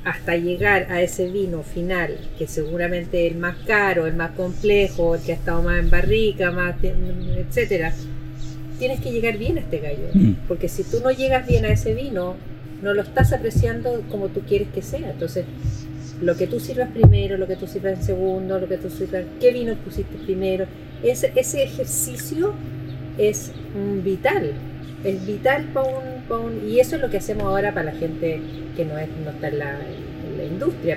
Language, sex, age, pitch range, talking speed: Spanish, female, 40-59, 155-200 Hz, 185 wpm